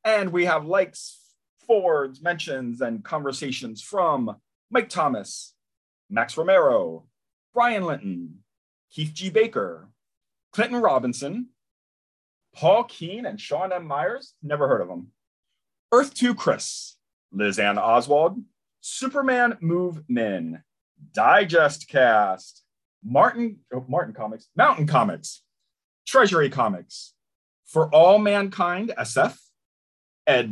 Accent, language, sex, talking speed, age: American, English, male, 105 wpm, 30-49